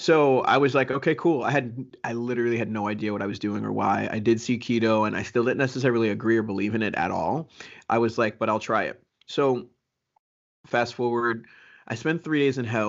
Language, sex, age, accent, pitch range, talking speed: English, male, 20-39, American, 105-125 Hz, 235 wpm